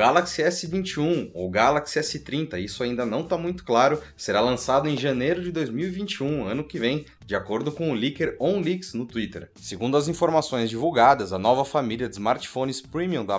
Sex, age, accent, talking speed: male, 20-39, Brazilian, 175 wpm